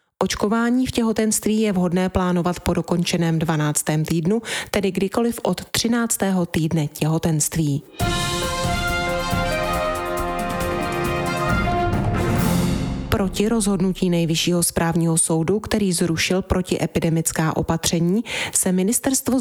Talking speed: 85 wpm